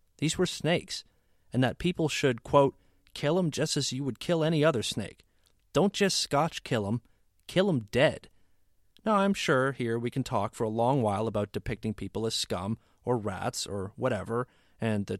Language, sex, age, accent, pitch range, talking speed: English, male, 30-49, American, 110-145 Hz, 190 wpm